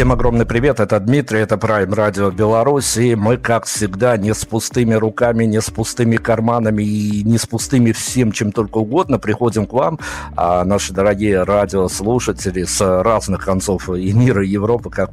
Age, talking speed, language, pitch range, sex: 50-69, 175 wpm, Russian, 95-110 Hz, male